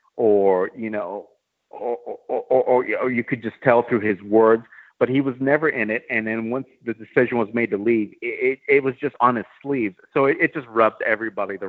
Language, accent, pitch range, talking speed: English, American, 105-125 Hz, 225 wpm